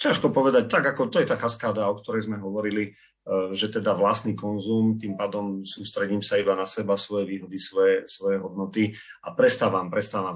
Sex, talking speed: male, 180 wpm